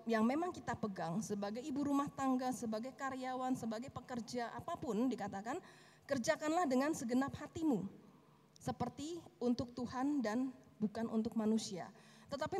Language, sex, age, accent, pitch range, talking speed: Indonesian, female, 30-49, native, 195-270 Hz, 125 wpm